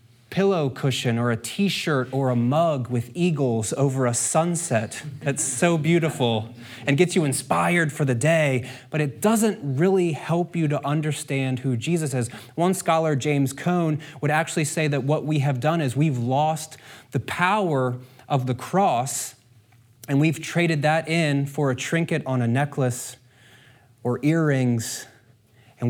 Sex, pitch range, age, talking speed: male, 120-155 Hz, 30-49, 160 wpm